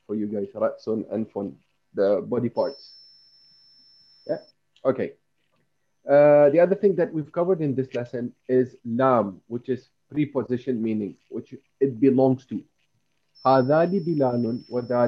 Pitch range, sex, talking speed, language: 120-150 Hz, male, 140 wpm, Malay